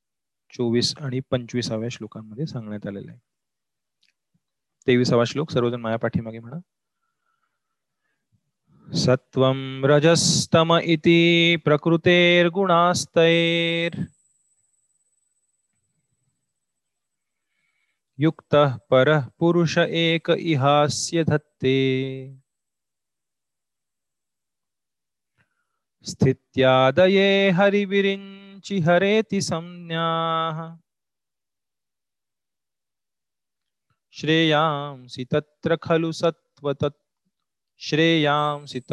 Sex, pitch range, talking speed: male, 130-170 Hz, 35 wpm